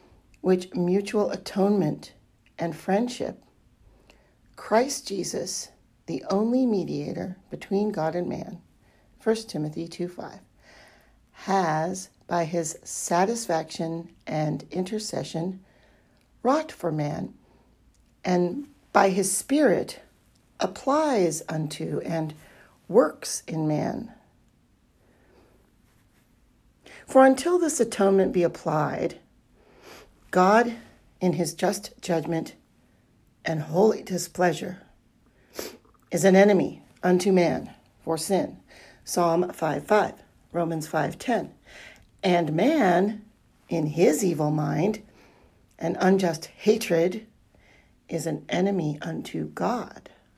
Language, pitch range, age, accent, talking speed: English, 160-205 Hz, 50-69, American, 90 wpm